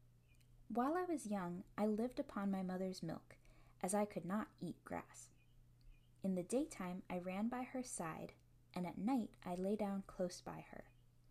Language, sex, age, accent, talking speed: English, female, 10-29, American, 175 wpm